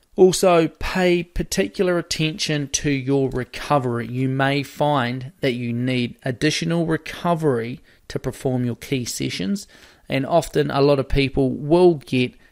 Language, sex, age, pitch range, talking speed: English, male, 20-39, 120-145 Hz, 135 wpm